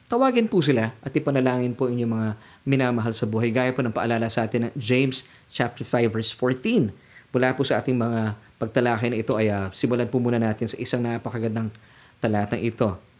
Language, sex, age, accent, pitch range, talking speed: Filipino, male, 20-39, native, 115-150 Hz, 190 wpm